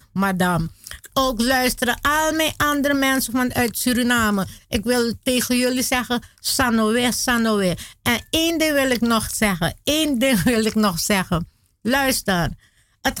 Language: Dutch